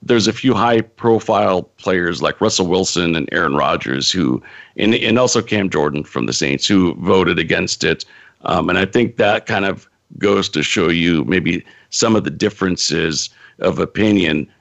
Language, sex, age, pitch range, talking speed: English, male, 50-69, 90-120 Hz, 175 wpm